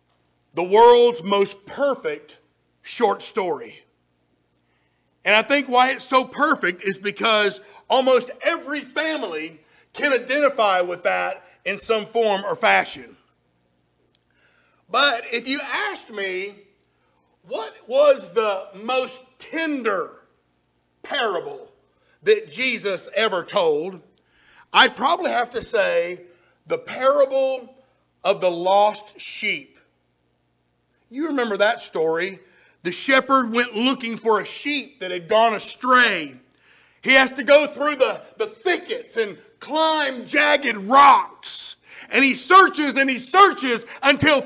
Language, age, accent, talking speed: English, 50-69, American, 115 wpm